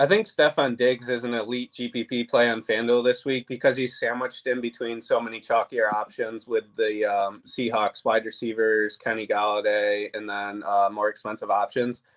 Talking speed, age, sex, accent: 180 wpm, 20-39, male, American